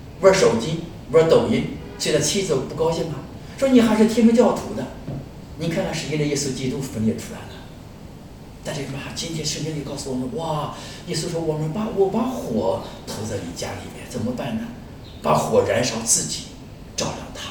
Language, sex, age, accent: English, male, 50-69, Chinese